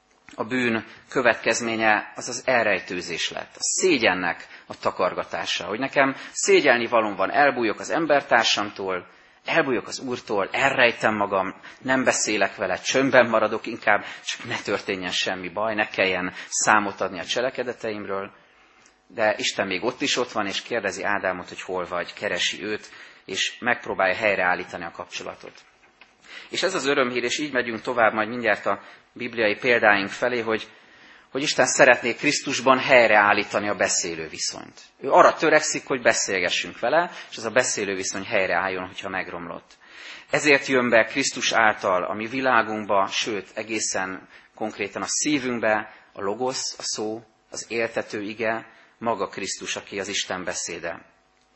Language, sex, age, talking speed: Hungarian, male, 30-49, 145 wpm